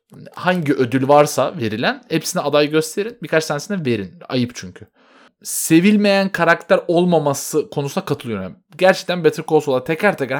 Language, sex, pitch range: Turkish, male, 130-185 Hz